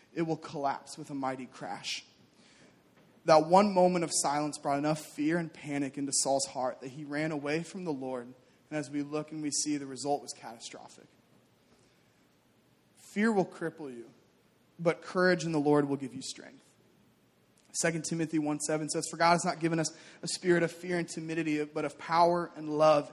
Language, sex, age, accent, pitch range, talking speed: English, male, 20-39, American, 145-175 Hz, 185 wpm